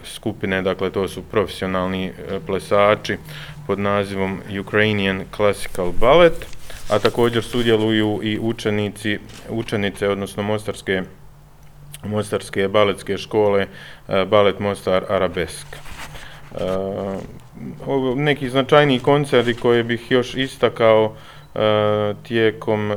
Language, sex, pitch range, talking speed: Croatian, male, 100-120 Hz, 95 wpm